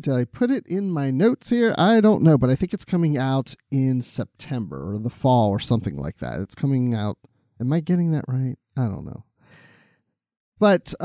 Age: 40-59